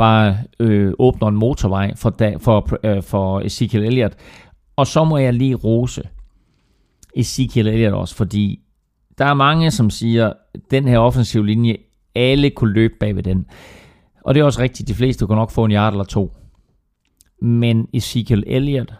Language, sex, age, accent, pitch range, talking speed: Danish, male, 40-59, native, 105-135 Hz, 165 wpm